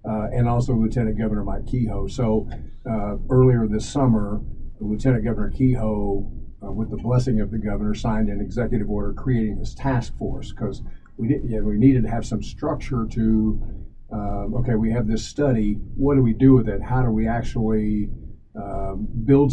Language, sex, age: English, male, 50-69